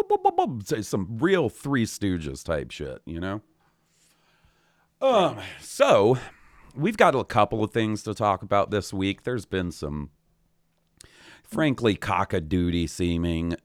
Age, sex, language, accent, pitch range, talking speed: 40-59, male, English, American, 80-105 Hz, 125 wpm